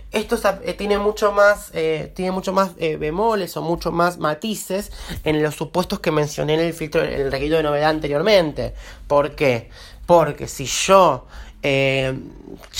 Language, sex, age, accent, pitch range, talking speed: Spanish, male, 30-49, Argentinian, 145-190 Hz, 165 wpm